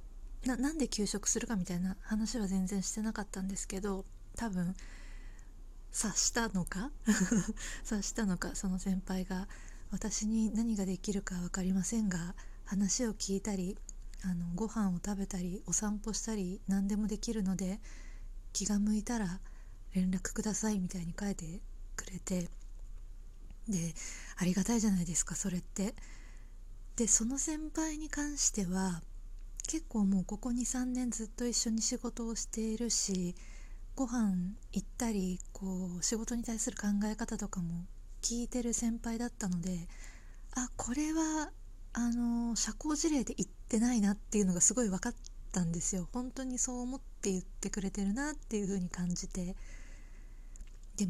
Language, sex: Japanese, female